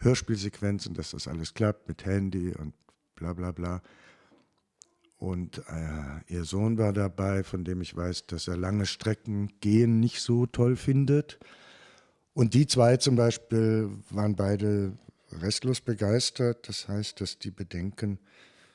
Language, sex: German, male